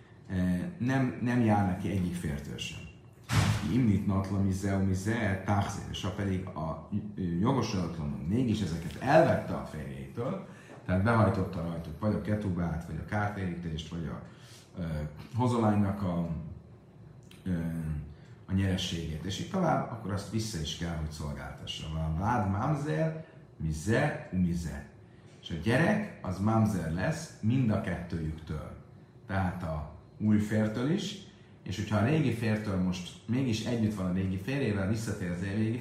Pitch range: 90-115 Hz